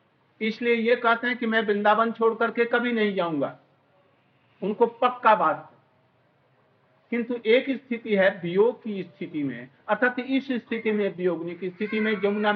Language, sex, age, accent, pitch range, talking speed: Hindi, male, 60-79, native, 185-240 Hz, 115 wpm